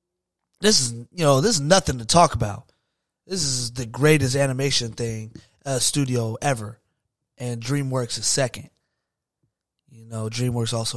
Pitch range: 115-140 Hz